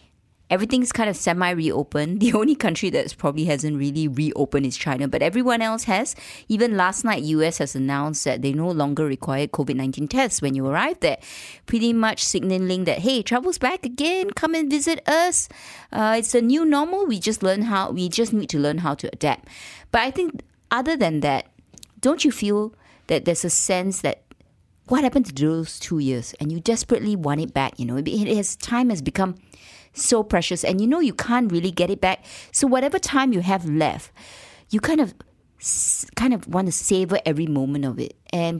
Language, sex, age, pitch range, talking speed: English, female, 30-49, 150-230 Hz, 200 wpm